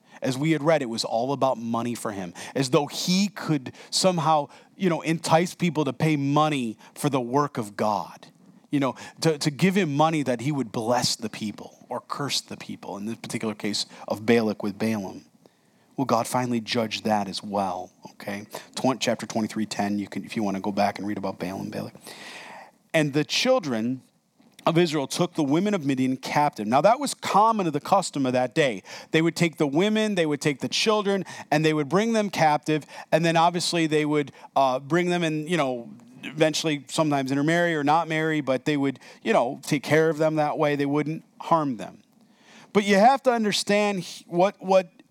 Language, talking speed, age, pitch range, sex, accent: English, 200 wpm, 40-59, 135-190 Hz, male, American